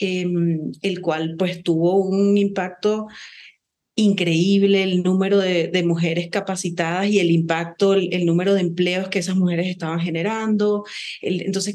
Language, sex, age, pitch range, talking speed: Spanish, female, 30-49, 170-195 Hz, 150 wpm